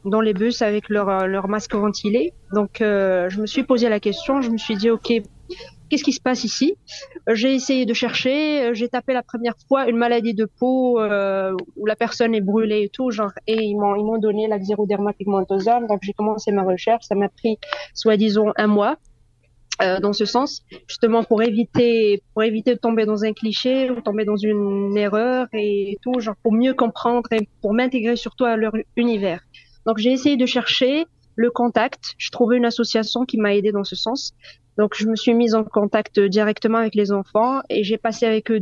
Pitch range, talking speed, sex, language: 210-240 Hz, 210 wpm, female, French